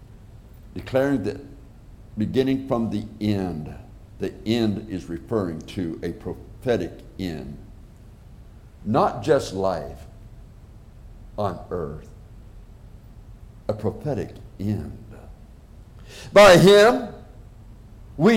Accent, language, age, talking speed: American, English, 60-79, 80 wpm